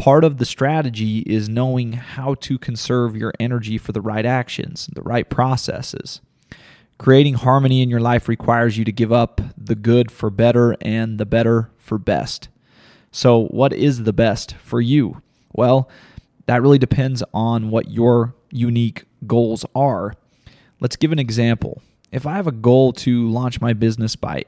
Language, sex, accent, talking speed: English, male, American, 165 wpm